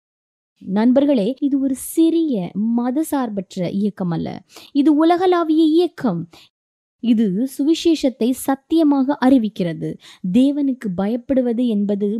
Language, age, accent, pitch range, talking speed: Tamil, 20-39, native, 210-275 Hz, 90 wpm